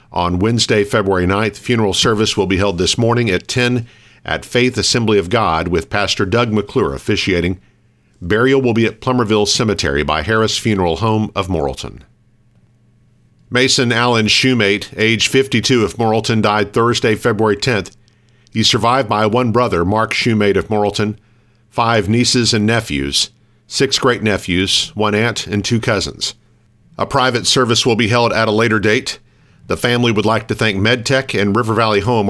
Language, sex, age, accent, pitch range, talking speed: English, male, 50-69, American, 100-120 Hz, 165 wpm